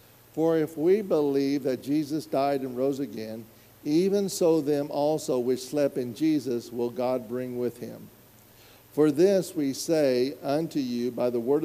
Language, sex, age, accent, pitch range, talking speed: English, male, 50-69, American, 120-150 Hz, 165 wpm